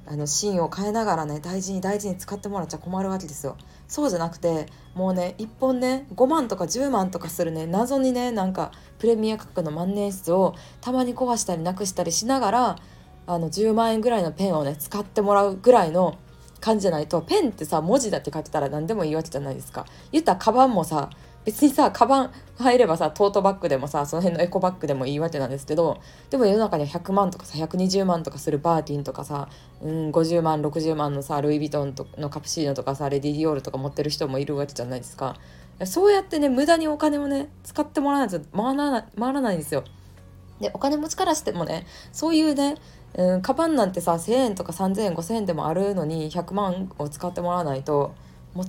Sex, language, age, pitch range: female, Japanese, 20-39, 150-225 Hz